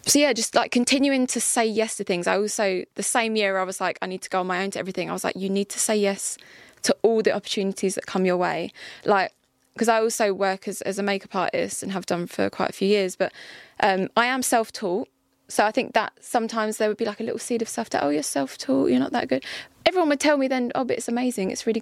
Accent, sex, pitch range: British, female, 190-230 Hz